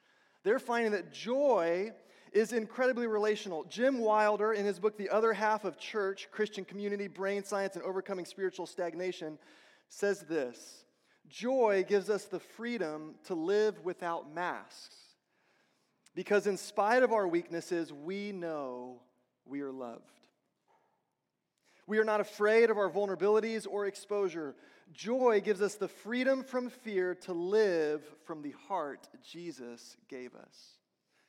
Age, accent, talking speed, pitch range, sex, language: 30-49, American, 135 wpm, 155-205 Hz, male, English